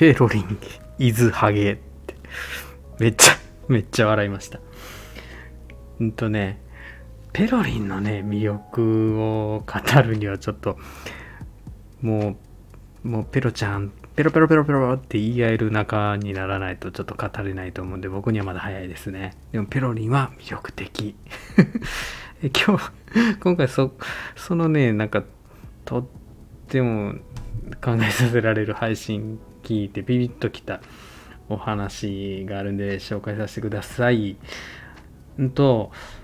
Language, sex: Japanese, male